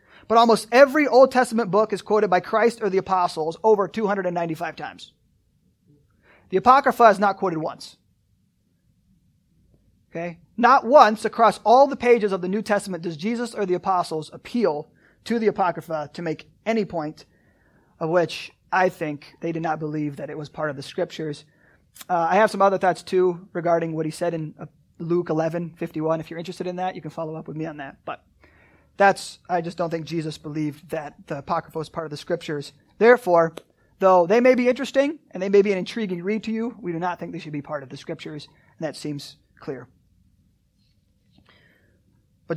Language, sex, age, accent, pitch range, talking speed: English, male, 30-49, American, 155-200 Hz, 190 wpm